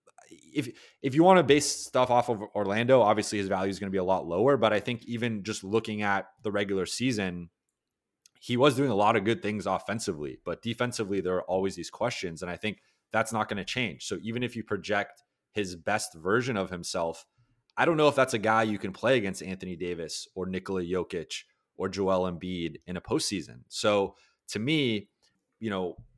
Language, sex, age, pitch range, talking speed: English, male, 30-49, 95-115 Hz, 210 wpm